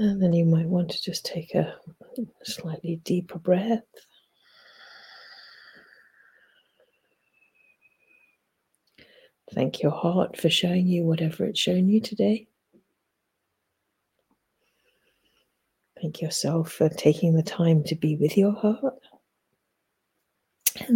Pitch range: 165-215 Hz